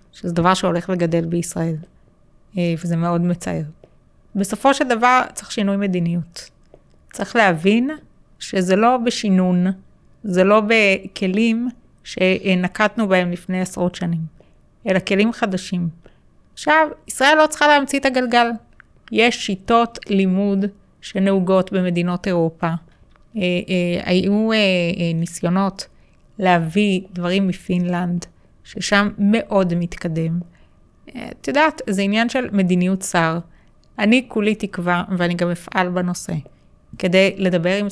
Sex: female